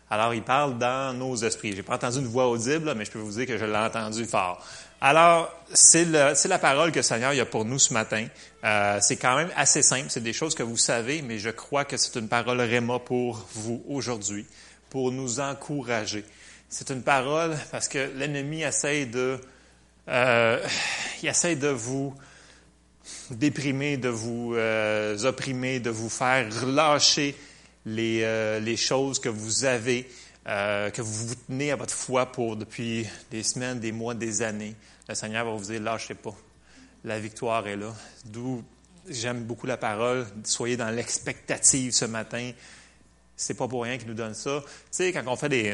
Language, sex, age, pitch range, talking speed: French, male, 30-49, 110-130 Hz, 190 wpm